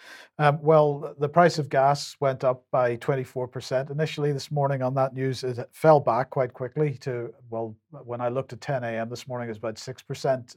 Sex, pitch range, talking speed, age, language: male, 120-140 Hz, 185 wpm, 40-59, English